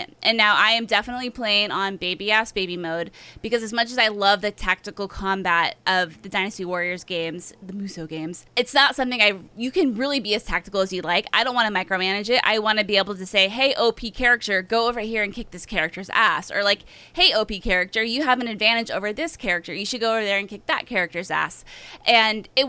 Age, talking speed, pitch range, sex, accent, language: 20-39, 235 wpm, 185-235 Hz, female, American, English